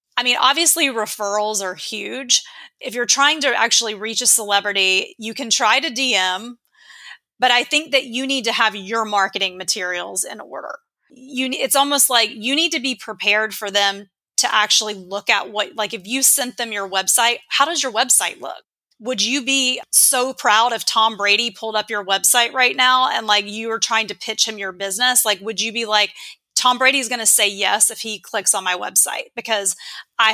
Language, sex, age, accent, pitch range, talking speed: English, female, 30-49, American, 205-260 Hz, 205 wpm